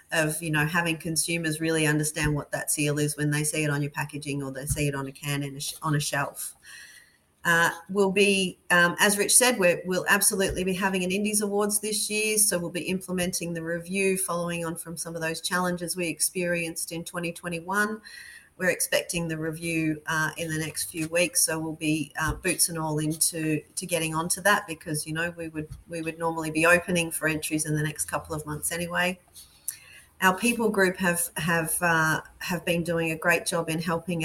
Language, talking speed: English, 210 wpm